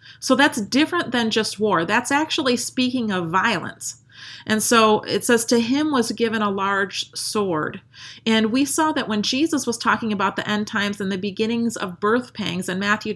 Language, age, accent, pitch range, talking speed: English, 40-59, American, 190-235 Hz, 190 wpm